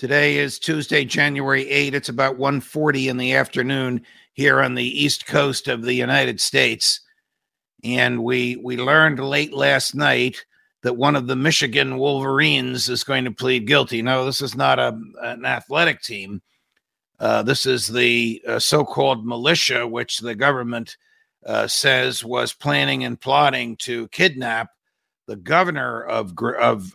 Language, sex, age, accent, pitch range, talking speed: English, male, 50-69, American, 120-140 Hz, 150 wpm